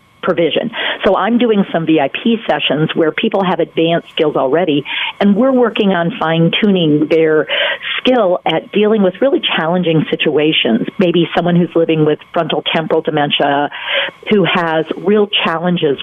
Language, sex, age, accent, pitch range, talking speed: English, female, 50-69, American, 160-210 Hz, 140 wpm